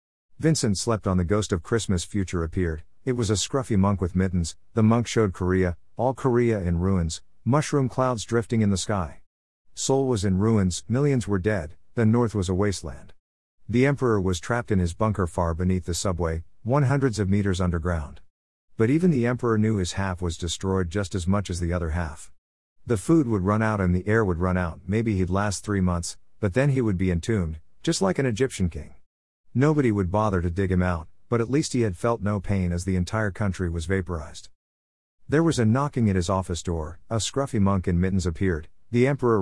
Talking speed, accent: 210 wpm, American